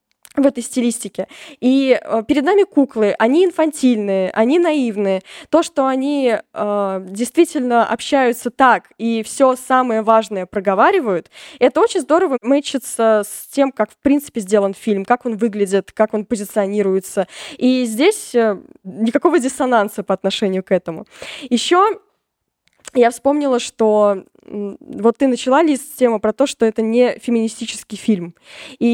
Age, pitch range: 10-29, 210-265 Hz